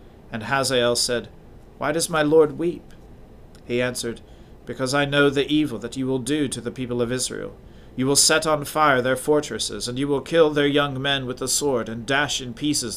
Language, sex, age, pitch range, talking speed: English, male, 40-59, 110-140 Hz, 210 wpm